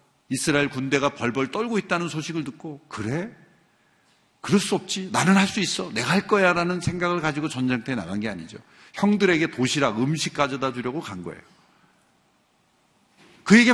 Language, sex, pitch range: Korean, male, 130-185 Hz